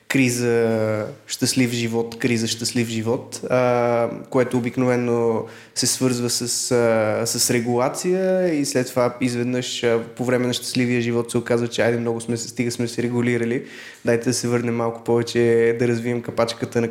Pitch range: 120-135 Hz